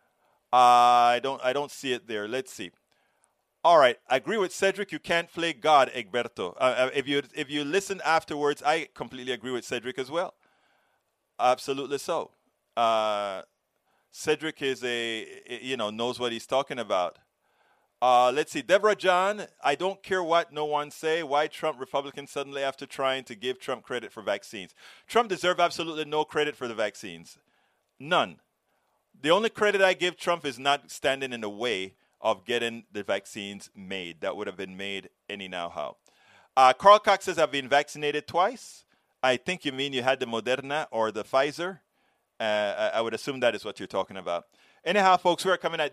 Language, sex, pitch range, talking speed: English, male, 120-165 Hz, 185 wpm